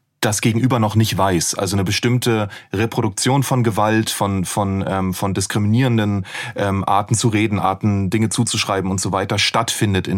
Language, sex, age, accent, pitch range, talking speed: German, male, 30-49, German, 100-120 Hz, 165 wpm